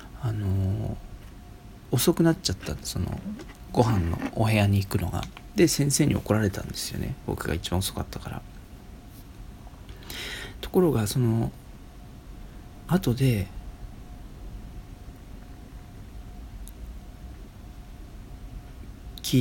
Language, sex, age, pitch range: Japanese, male, 40-59, 100-140 Hz